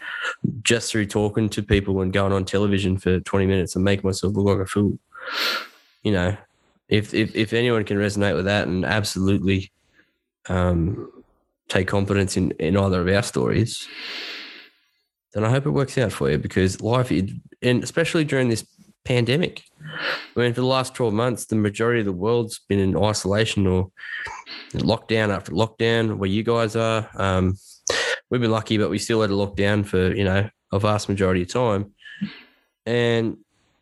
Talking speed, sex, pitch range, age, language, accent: 175 wpm, male, 95-115 Hz, 10-29, English, Australian